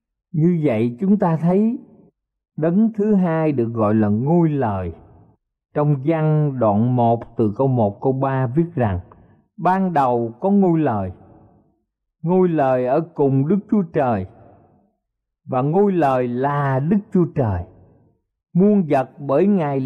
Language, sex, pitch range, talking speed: Vietnamese, male, 115-175 Hz, 140 wpm